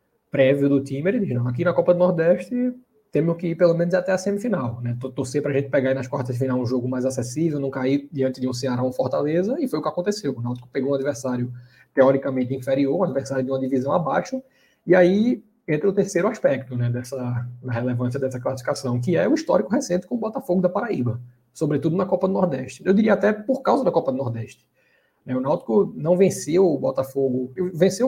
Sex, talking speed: male, 220 wpm